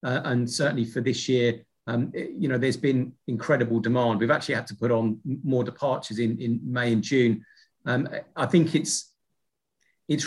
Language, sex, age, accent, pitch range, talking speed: English, male, 30-49, British, 120-145 Hz, 180 wpm